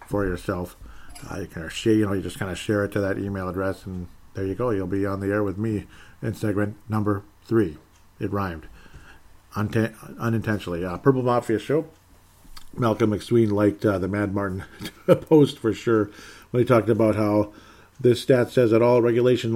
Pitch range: 95-115 Hz